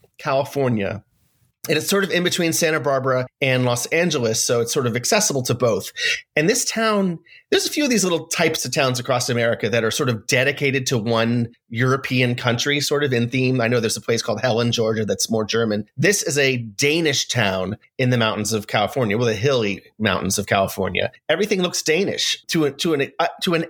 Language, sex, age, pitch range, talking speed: English, male, 30-49, 115-160 Hz, 205 wpm